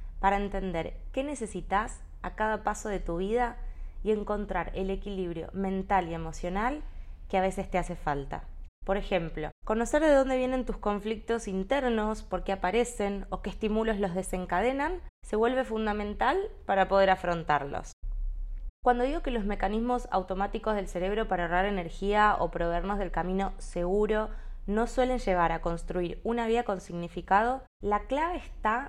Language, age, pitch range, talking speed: Spanish, 20-39, 185-240 Hz, 155 wpm